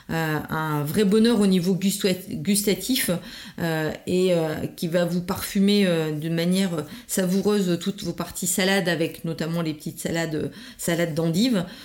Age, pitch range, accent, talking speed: 40-59, 170-200 Hz, French, 145 wpm